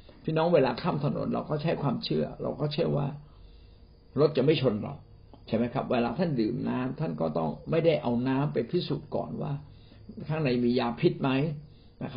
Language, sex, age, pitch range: Thai, male, 60-79, 110-145 Hz